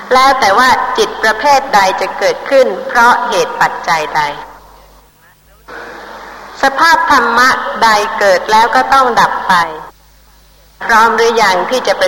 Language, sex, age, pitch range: Thai, female, 30-49, 225-295 Hz